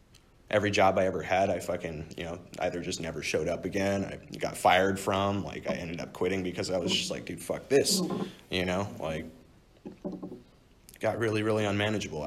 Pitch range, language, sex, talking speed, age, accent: 95-120 Hz, English, male, 190 wpm, 30-49, American